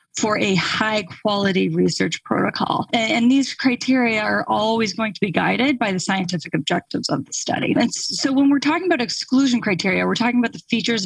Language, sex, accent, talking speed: English, female, American, 185 wpm